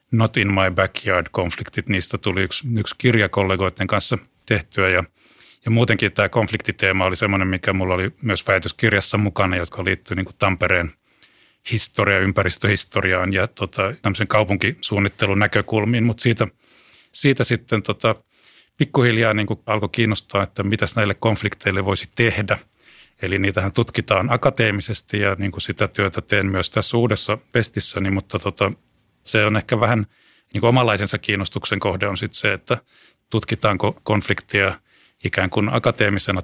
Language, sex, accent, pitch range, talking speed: Finnish, male, native, 95-110 Hz, 135 wpm